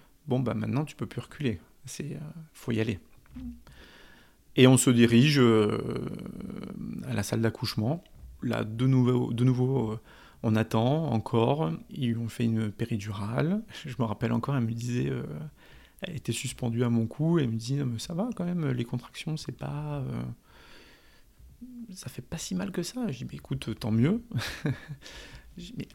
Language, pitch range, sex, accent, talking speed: French, 115-140 Hz, male, French, 175 wpm